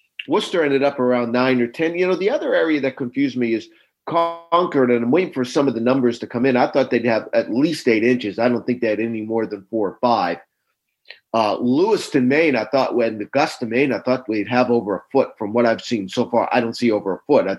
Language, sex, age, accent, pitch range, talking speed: English, male, 50-69, American, 115-155 Hz, 255 wpm